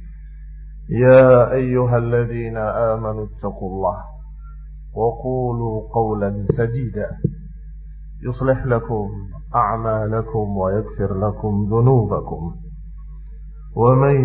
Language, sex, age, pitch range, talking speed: Indonesian, male, 50-69, 90-110 Hz, 65 wpm